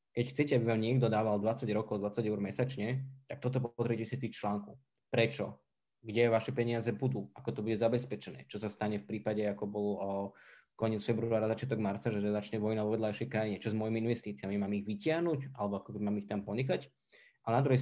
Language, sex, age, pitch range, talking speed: Slovak, male, 20-39, 105-125 Hz, 200 wpm